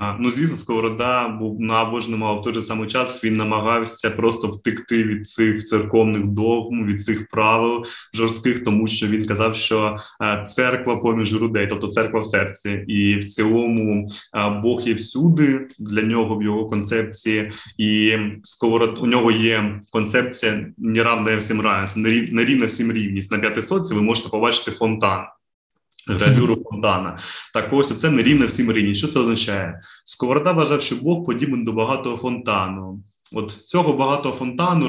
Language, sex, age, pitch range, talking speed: Ukrainian, male, 20-39, 110-130 Hz, 155 wpm